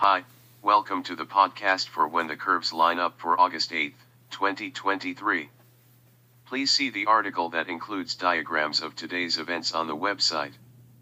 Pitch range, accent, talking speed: 100-125 Hz, American, 150 wpm